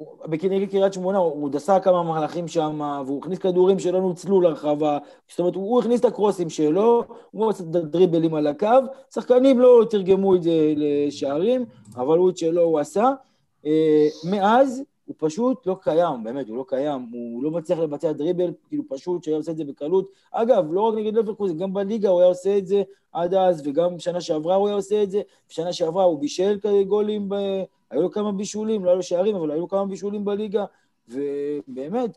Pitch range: 150-200 Hz